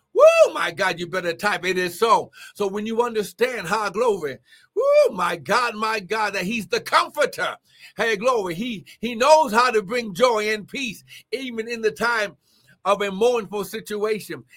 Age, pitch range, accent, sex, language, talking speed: 60-79, 135-215 Hz, American, male, English, 175 wpm